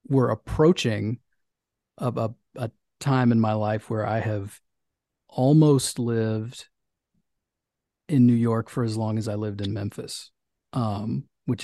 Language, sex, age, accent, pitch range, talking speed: English, male, 30-49, American, 105-125 Hz, 140 wpm